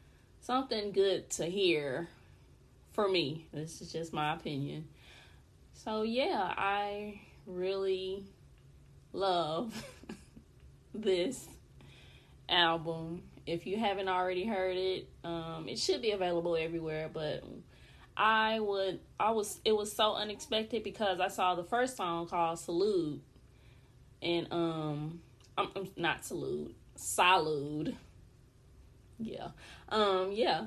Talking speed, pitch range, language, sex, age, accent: 110 wpm, 165-215 Hz, English, female, 20-39, American